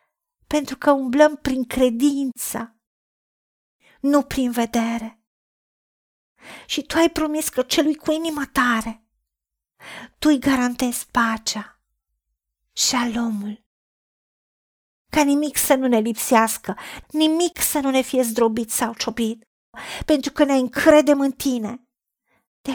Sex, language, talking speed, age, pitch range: female, Romanian, 115 wpm, 40-59, 220-275 Hz